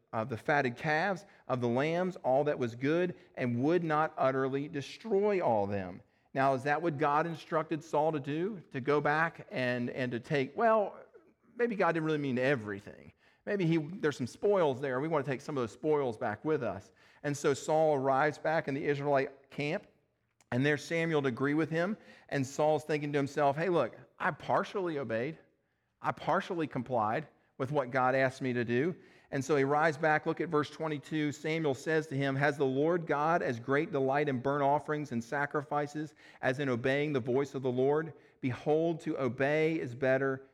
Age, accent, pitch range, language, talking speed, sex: 40-59, American, 130-155 Hz, English, 195 wpm, male